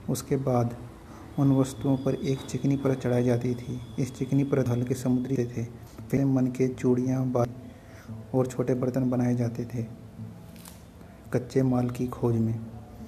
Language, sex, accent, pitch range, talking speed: Hindi, male, native, 120-130 Hz, 150 wpm